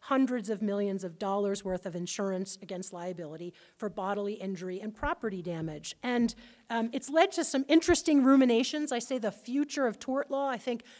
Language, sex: English, female